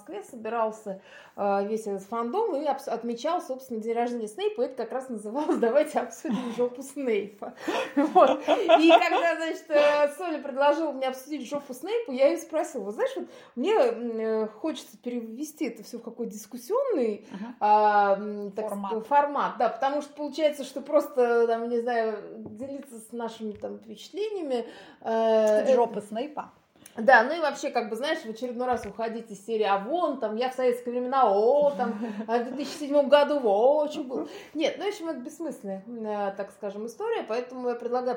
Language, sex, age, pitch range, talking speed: Russian, female, 20-39, 225-300 Hz, 150 wpm